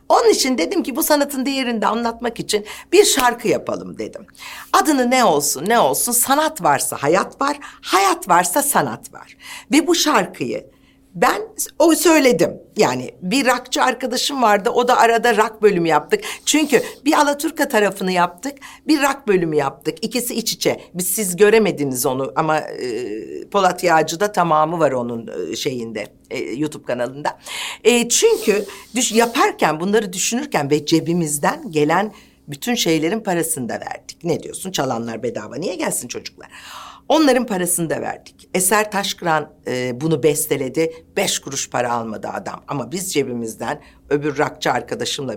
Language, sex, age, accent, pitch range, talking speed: Turkish, female, 60-79, native, 160-270 Hz, 150 wpm